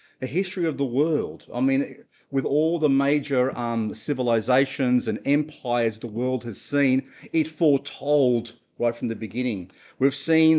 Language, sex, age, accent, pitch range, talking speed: English, male, 40-59, Australian, 125-160 Hz, 155 wpm